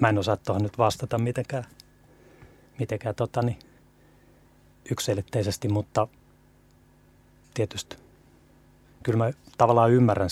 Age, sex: 30-49, male